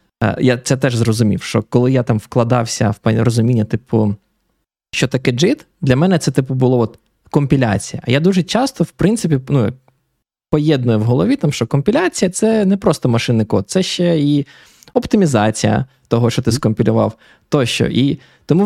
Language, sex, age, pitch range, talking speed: Ukrainian, male, 20-39, 115-150 Hz, 165 wpm